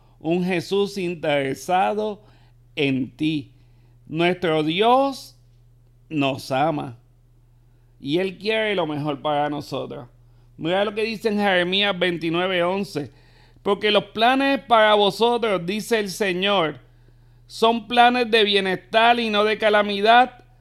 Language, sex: Spanish, male